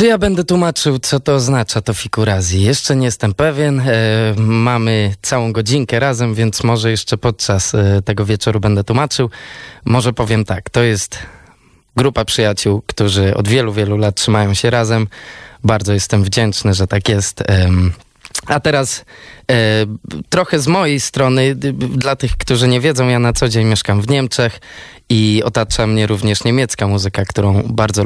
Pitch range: 105-125 Hz